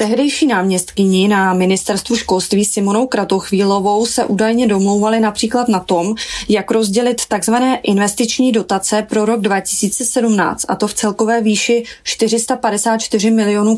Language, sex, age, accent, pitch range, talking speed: Czech, female, 20-39, native, 200-230 Hz, 120 wpm